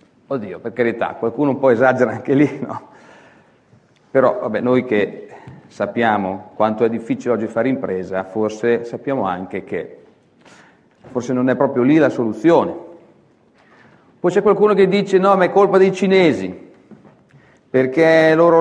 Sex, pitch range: male, 120-185 Hz